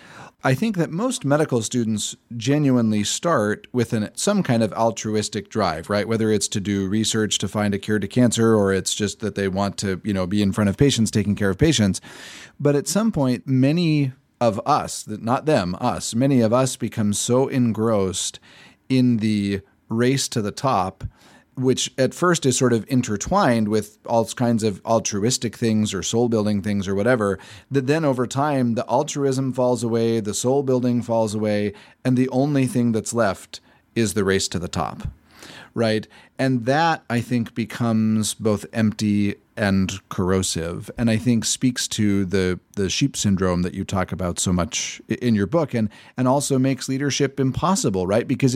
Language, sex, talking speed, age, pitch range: English, male, 185 wpm, 30-49, 105-130 Hz